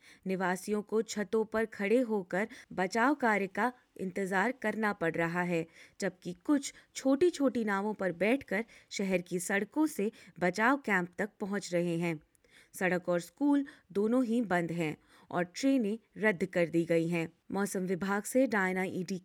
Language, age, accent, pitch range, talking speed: Hindi, 20-39, native, 185-235 Hz, 155 wpm